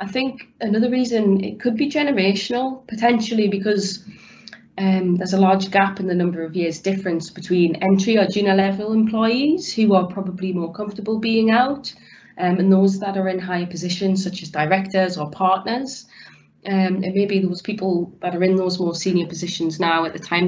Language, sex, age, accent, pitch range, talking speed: English, female, 30-49, British, 180-205 Hz, 185 wpm